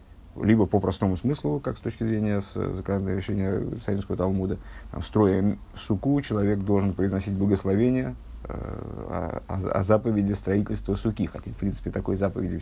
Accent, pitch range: native, 95-115 Hz